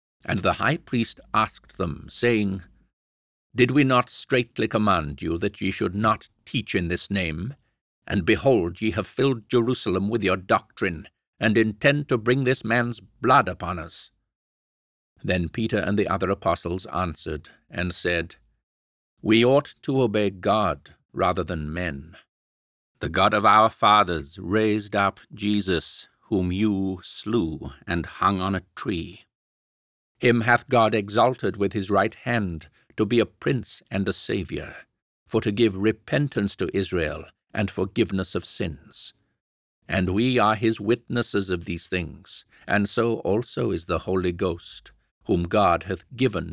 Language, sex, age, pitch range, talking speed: English, male, 50-69, 85-115 Hz, 150 wpm